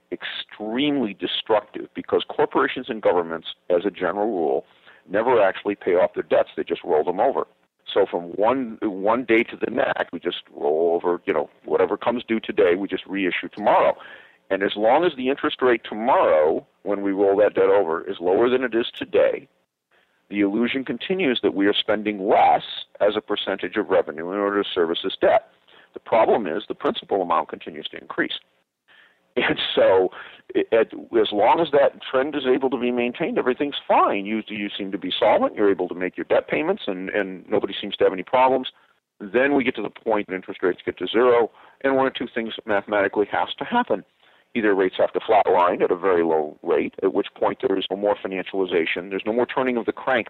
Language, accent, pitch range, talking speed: English, American, 100-150 Hz, 210 wpm